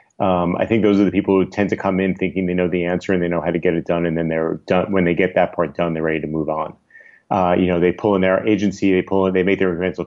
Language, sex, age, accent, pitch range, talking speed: English, male, 30-49, American, 90-105 Hz, 330 wpm